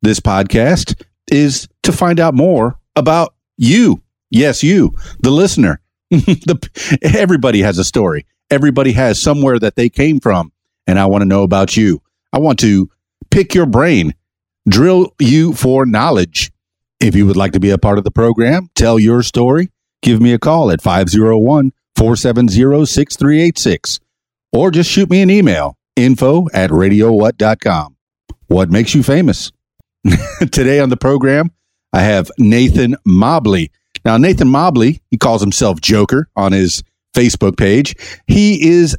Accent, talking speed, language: American, 150 wpm, English